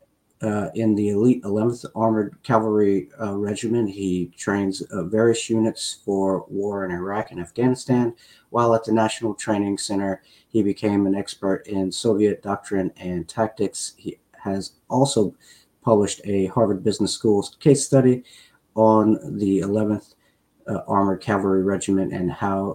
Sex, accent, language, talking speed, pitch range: male, American, English, 140 wpm, 100-120 Hz